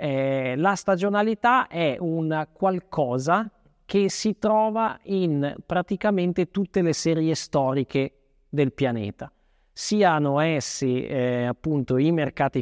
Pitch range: 130-170 Hz